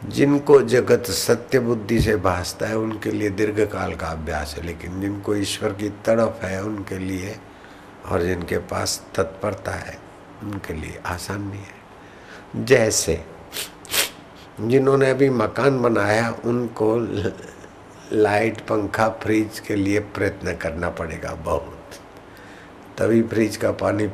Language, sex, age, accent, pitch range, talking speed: Hindi, male, 60-79, native, 95-120 Hz, 125 wpm